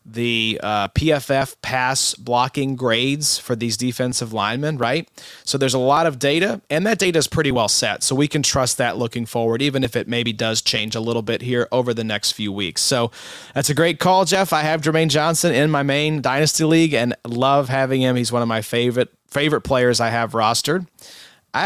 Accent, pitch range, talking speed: American, 115-155 Hz, 210 wpm